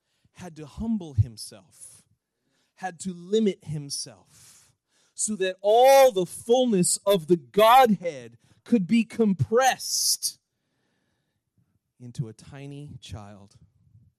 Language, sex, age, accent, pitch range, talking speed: English, male, 40-59, American, 120-185 Hz, 95 wpm